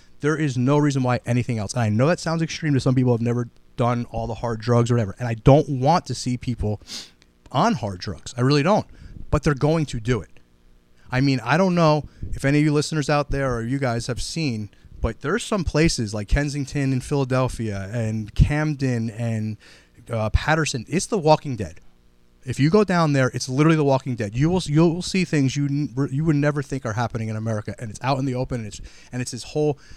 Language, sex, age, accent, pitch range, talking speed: English, male, 30-49, American, 115-155 Hz, 235 wpm